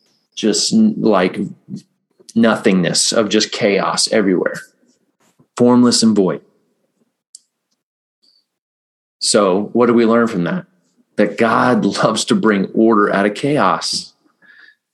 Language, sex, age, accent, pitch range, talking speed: English, male, 30-49, American, 100-120 Hz, 105 wpm